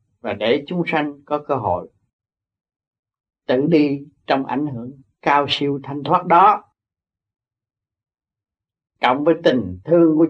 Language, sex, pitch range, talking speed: Vietnamese, male, 105-150 Hz, 130 wpm